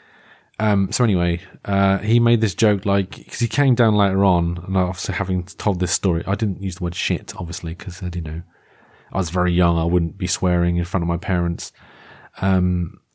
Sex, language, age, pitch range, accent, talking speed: male, English, 40-59, 100-130 Hz, British, 205 wpm